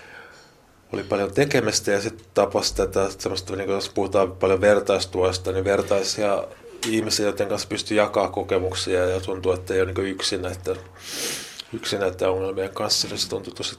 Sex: male